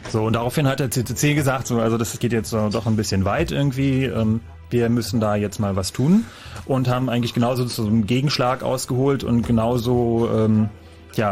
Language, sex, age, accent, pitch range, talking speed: German, male, 30-49, German, 110-130 Hz, 195 wpm